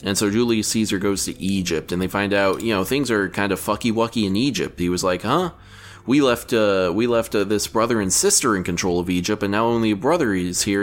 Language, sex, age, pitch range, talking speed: English, male, 20-39, 90-115 Hz, 250 wpm